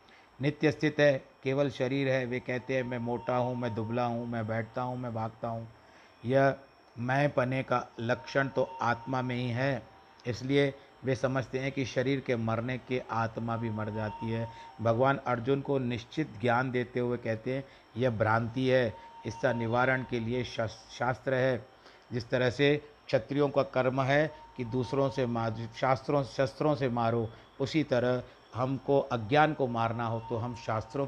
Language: Hindi